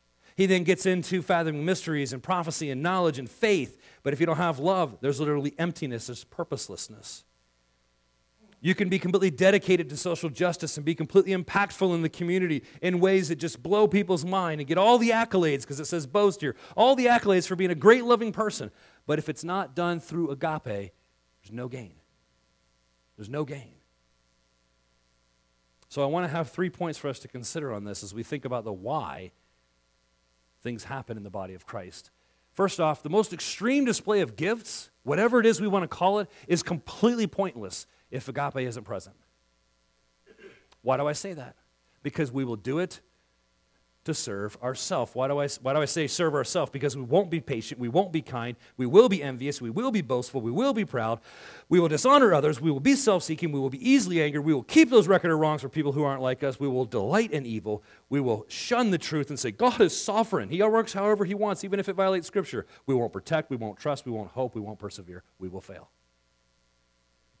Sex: male